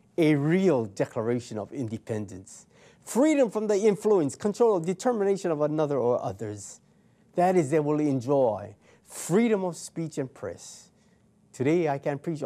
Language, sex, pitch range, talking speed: English, male, 120-175 Hz, 140 wpm